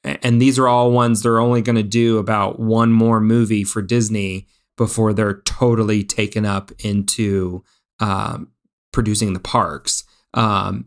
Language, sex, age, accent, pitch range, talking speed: English, male, 30-49, American, 105-120 Hz, 145 wpm